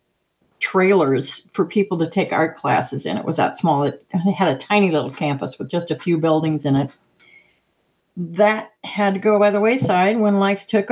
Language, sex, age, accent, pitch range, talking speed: English, female, 50-69, American, 170-220 Hz, 190 wpm